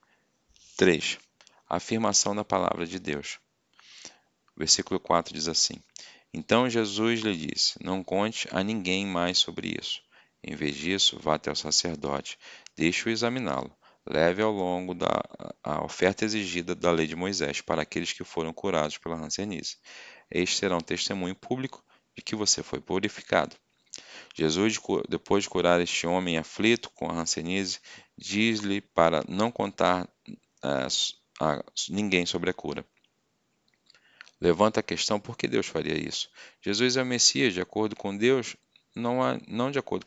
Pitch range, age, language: 85-105 Hz, 40-59, Portuguese